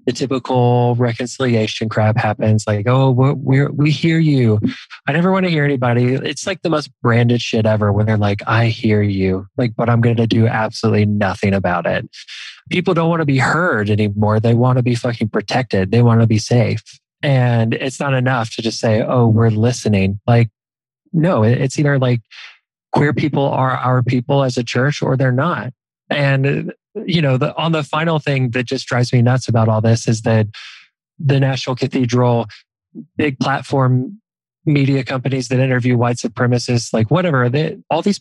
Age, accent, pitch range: 20-39, American, 115-135 Hz